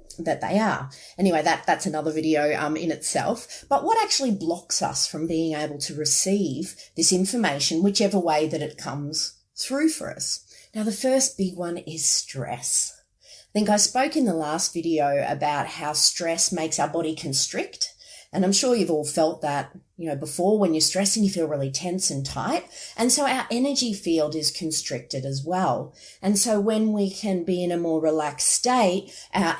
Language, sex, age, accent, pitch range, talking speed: English, female, 30-49, Australian, 155-205 Hz, 190 wpm